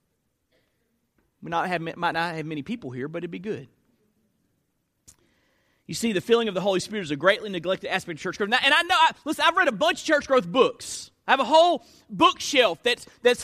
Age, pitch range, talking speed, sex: 30-49, 230-325 Hz, 215 wpm, male